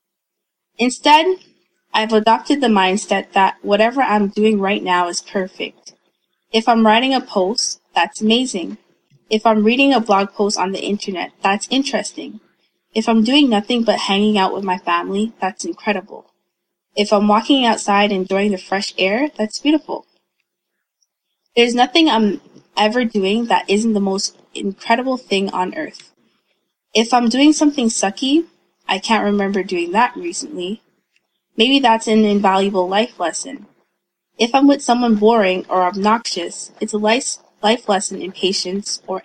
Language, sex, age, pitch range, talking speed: English, female, 20-39, 195-235 Hz, 150 wpm